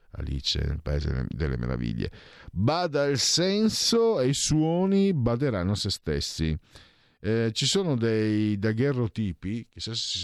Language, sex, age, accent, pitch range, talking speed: Italian, male, 50-69, native, 85-135 Hz, 135 wpm